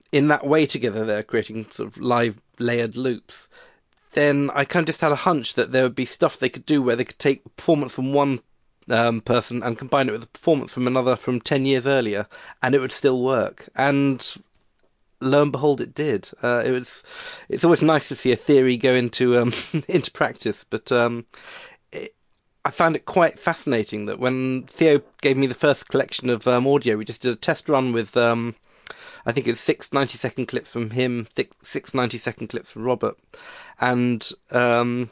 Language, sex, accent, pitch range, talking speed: English, male, British, 120-145 Hz, 205 wpm